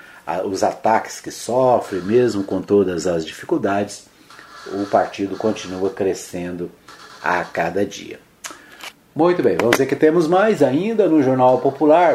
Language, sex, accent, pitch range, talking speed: Portuguese, male, Brazilian, 100-135 Hz, 140 wpm